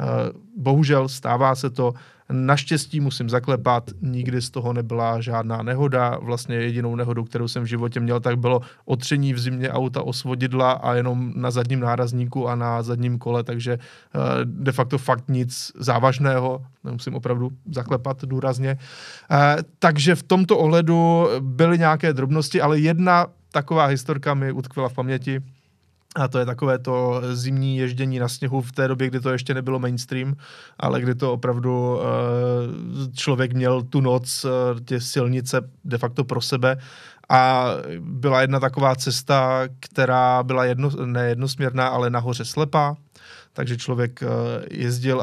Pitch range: 125-140 Hz